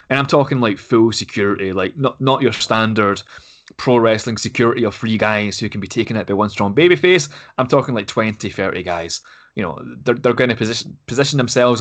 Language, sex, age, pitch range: English, male, 20-39, 110-140 Hz